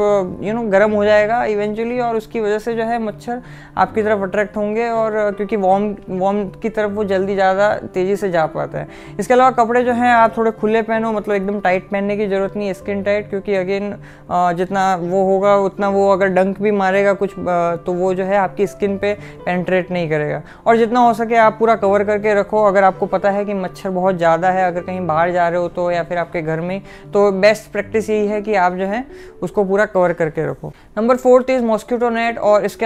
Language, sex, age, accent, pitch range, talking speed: Hindi, female, 20-39, native, 185-215 Hz, 225 wpm